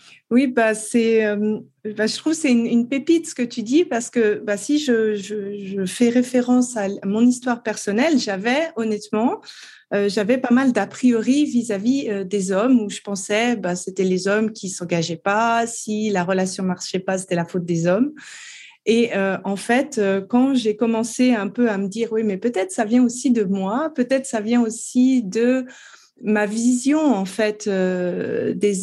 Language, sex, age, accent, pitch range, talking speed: French, female, 30-49, French, 205-250 Hz, 200 wpm